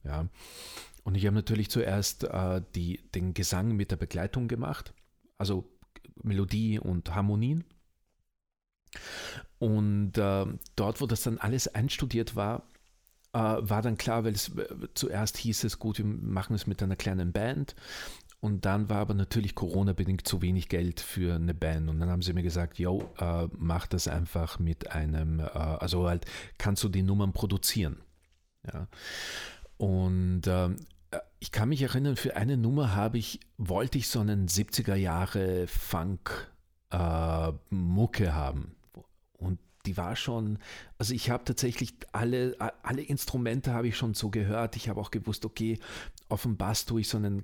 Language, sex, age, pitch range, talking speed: German, male, 40-59, 90-115 Hz, 160 wpm